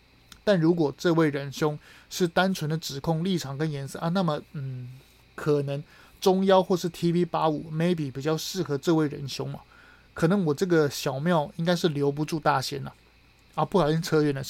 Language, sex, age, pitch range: Chinese, male, 30-49, 145-180 Hz